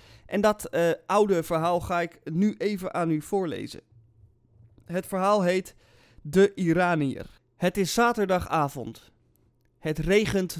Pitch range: 130-195 Hz